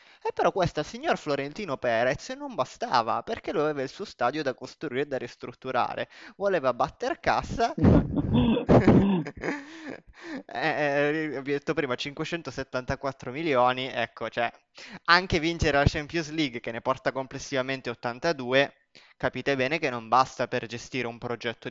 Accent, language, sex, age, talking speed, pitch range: native, Italian, male, 20-39, 145 wpm, 125-155 Hz